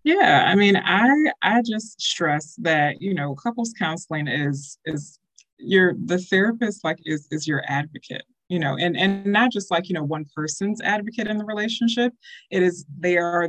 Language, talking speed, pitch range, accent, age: English, 180 wpm, 150-190 Hz, American, 20-39